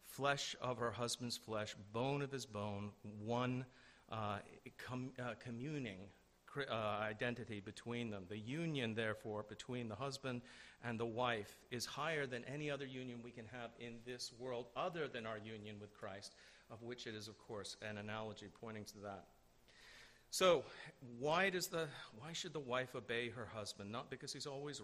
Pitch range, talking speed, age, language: 105-125 Hz, 170 wpm, 50-69, English